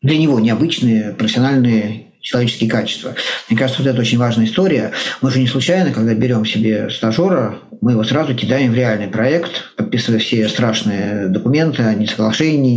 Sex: male